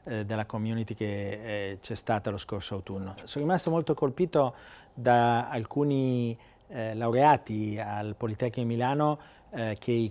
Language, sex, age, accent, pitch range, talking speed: Italian, male, 40-59, native, 110-140 Hz, 130 wpm